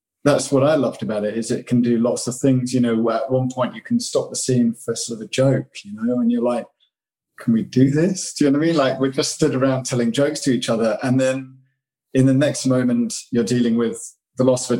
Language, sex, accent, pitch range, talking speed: English, male, British, 120-135 Hz, 270 wpm